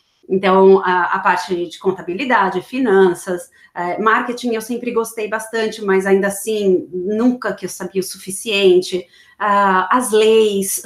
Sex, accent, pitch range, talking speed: female, Brazilian, 185-240 Hz, 135 wpm